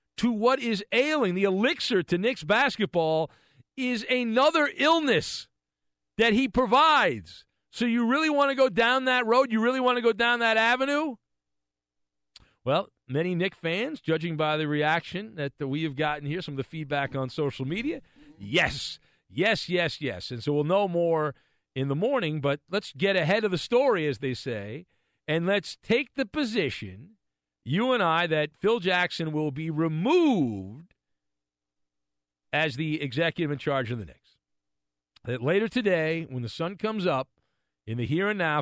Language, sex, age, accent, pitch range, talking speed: English, male, 50-69, American, 125-205 Hz, 170 wpm